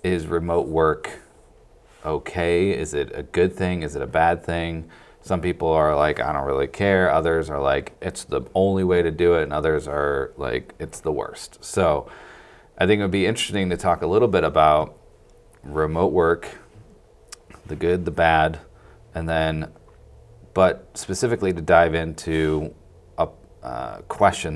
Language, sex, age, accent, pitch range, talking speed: English, male, 30-49, American, 75-90 Hz, 165 wpm